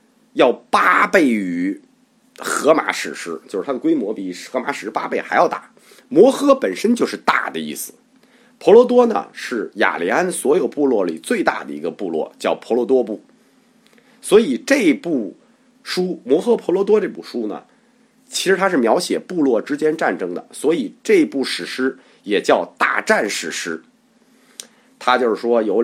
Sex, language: male, Chinese